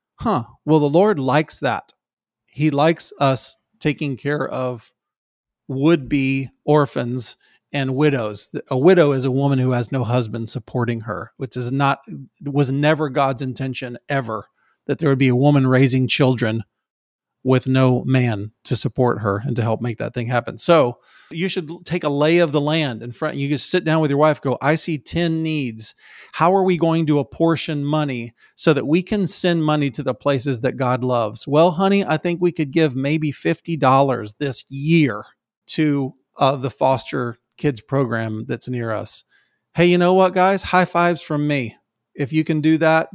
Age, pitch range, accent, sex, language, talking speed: 40-59, 130-160 Hz, American, male, English, 185 wpm